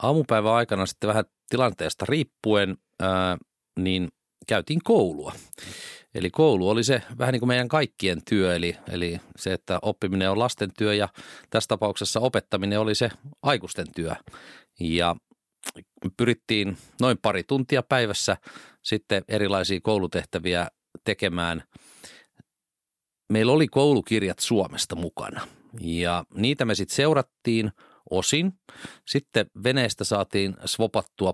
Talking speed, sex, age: 115 wpm, male, 40-59